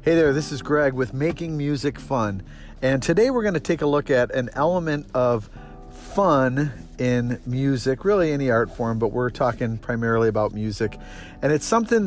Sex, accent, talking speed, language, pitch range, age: male, American, 185 wpm, English, 110-140 Hz, 50-69